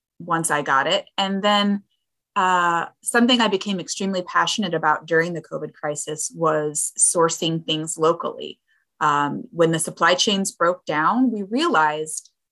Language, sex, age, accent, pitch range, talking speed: English, female, 30-49, American, 160-200 Hz, 145 wpm